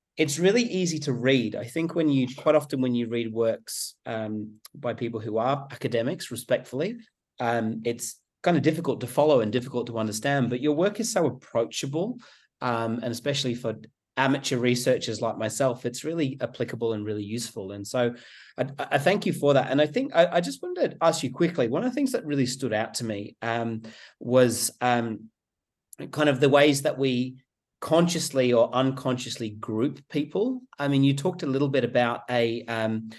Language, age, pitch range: English, 30-49, 115-145 Hz